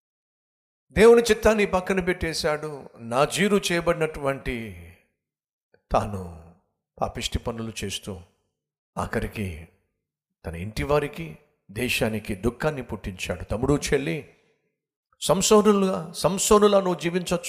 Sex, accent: male, native